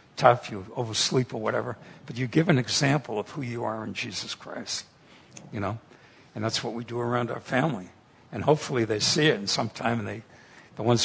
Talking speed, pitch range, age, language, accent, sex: 205 wpm, 110-130 Hz, 60-79, English, American, male